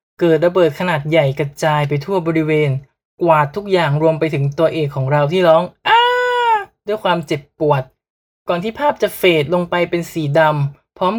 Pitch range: 150-190 Hz